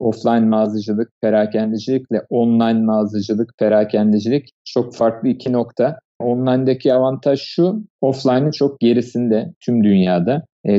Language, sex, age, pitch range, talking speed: Turkish, male, 50-69, 110-135 Hz, 105 wpm